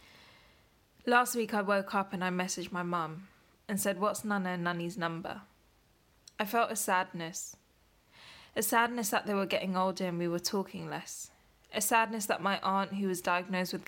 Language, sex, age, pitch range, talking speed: English, female, 10-29, 175-205 Hz, 180 wpm